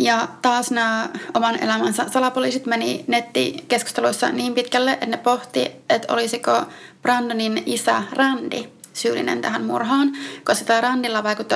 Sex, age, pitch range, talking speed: female, 30-49, 215-245 Hz, 125 wpm